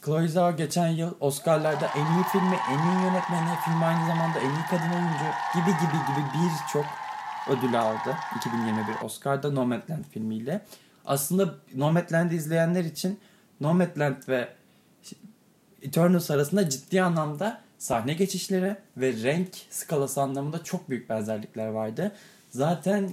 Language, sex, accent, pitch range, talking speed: Turkish, male, native, 130-185 Hz, 125 wpm